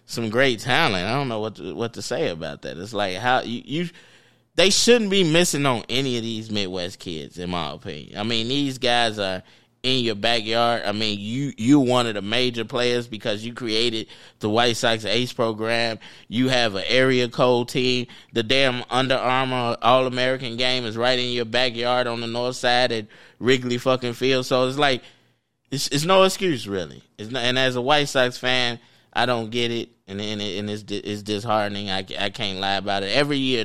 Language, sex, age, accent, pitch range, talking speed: English, male, 20-39, American, 105-125 Hz, 210 wpm